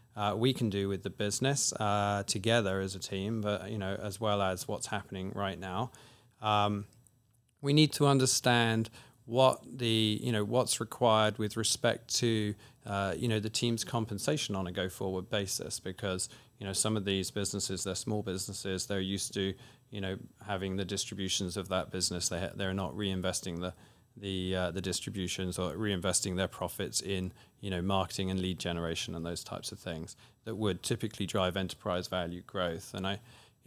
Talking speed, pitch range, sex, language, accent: 180 wpm, 95-115 Hz, male, English, British